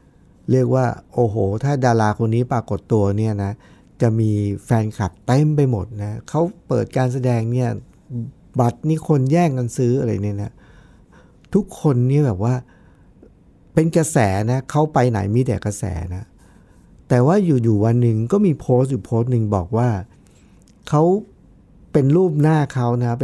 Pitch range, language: 110-155 Hz, Thai